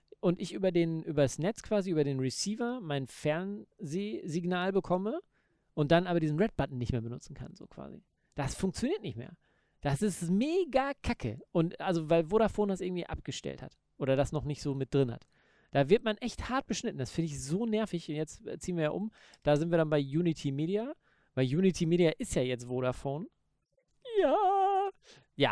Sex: male